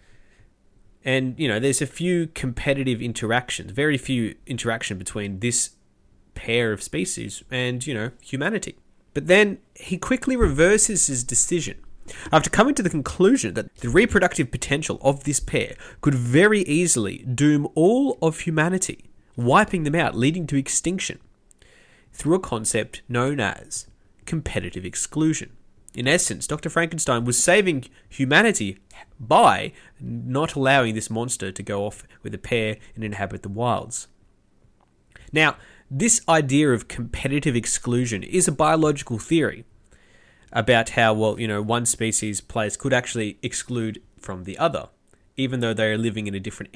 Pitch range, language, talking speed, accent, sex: 110-160 Hz, English, 145 wpm, Australian, male